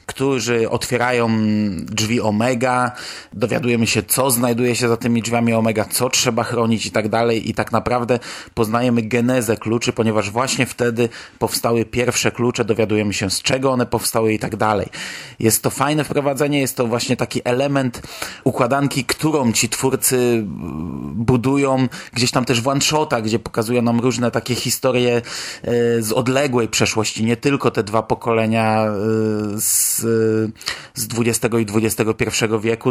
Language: Polish